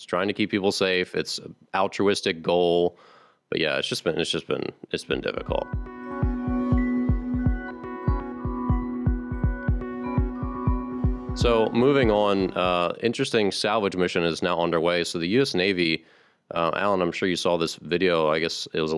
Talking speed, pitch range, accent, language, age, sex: 140 wpm, 85-120 Hz, American, English, 30-49, male